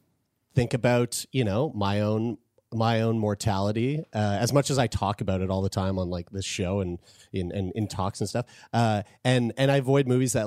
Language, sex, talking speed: English, male, 220 wpm